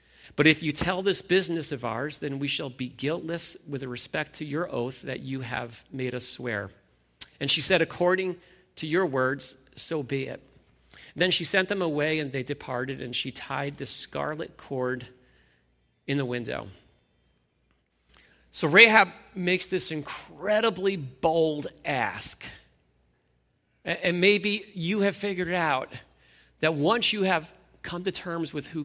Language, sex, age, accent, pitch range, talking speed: English, male, 40-59, American, 130-180 Hz, 150 wpm